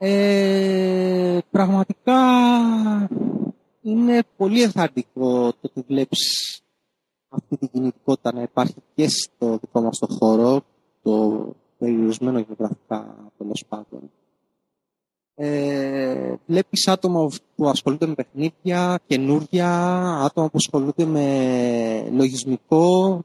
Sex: male